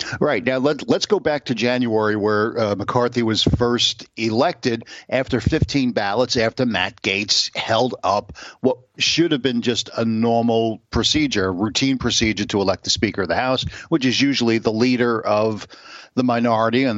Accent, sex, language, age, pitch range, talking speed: American, male, English, 50-69, 110-130 Hz, 170 wpm